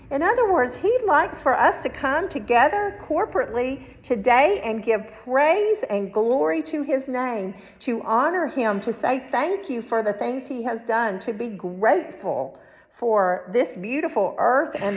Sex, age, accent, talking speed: female, 50-69, American, 165 wpm